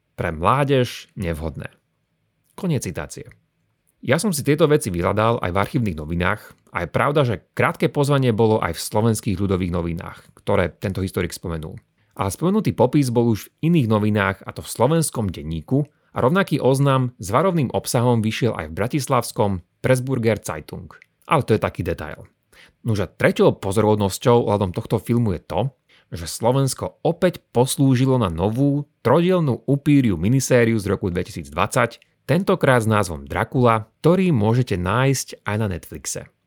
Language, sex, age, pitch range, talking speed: Slovak, male, 30-49, 95-140 Hz, 150 wpm